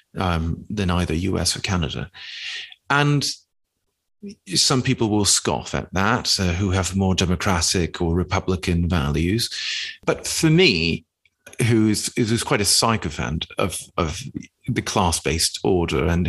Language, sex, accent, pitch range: English, male, British, 90-125 Hz